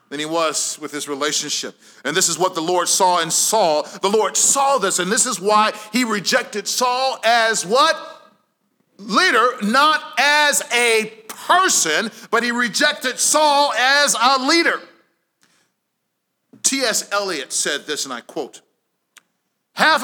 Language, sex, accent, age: English, male, American, 40-59